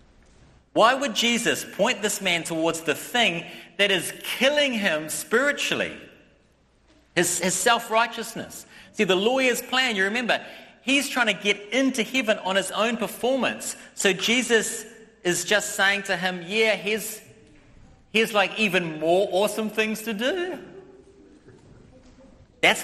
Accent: Australian